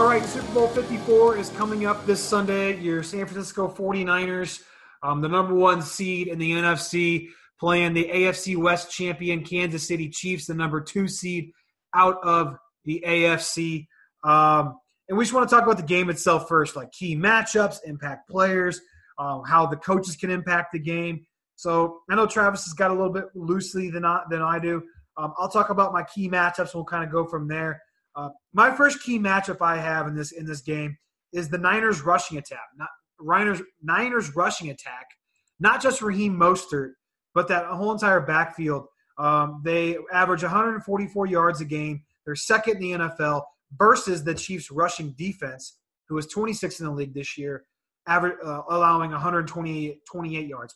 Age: 30-49